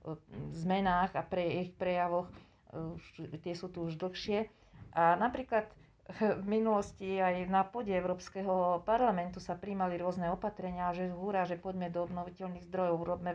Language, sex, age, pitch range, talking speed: Slovak, female, 40-59, 175-195 Hz, 140 wpm